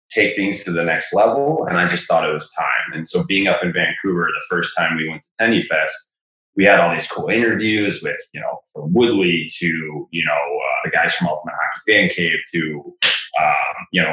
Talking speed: 225 wpm